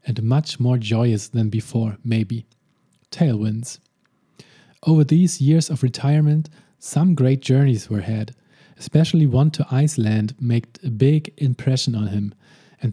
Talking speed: 135 wpm